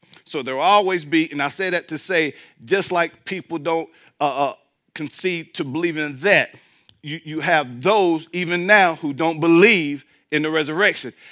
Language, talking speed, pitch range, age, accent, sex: English, 180 wpm, 150-195 Hz, 50-69, American, male